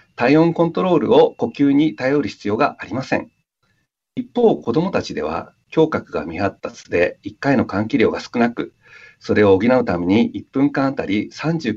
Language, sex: Japanese, male